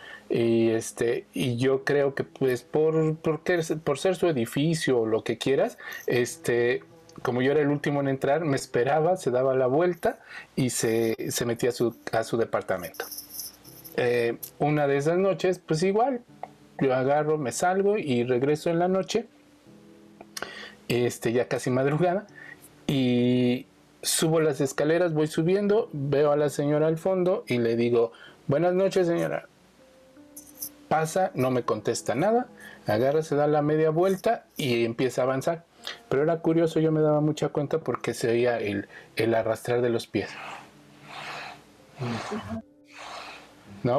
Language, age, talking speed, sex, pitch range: Spanish, 40-59, 150 wpm, male, 125-175 Hz